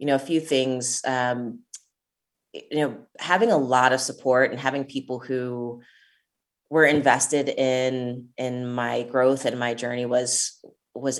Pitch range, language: 125-150 Hz, English